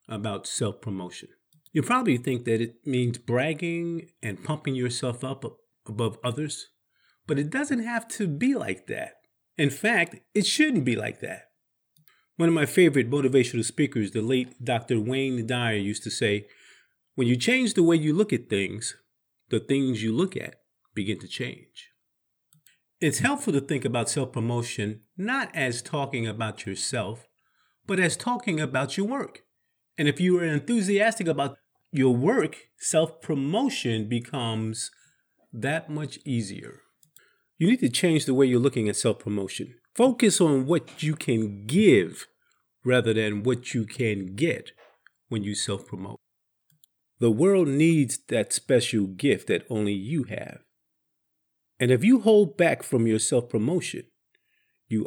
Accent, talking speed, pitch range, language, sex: American, 145 wpm, 115-160 Hz, English, male